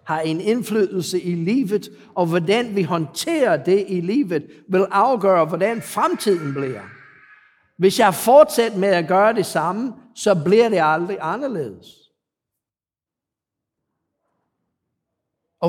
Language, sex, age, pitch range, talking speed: Danish, male, 60-79, 165-220 Hz, 120 wpm